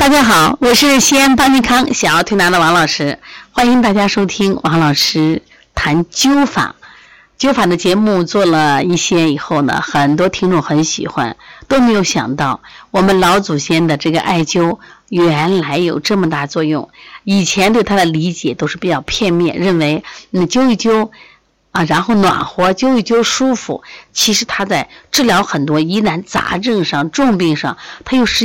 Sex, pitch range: female, 155-225 Hz